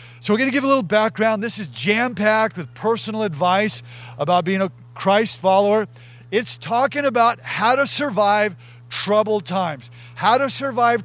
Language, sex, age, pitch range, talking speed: English, male, 40-59, 170-230 Hz, 165 wpm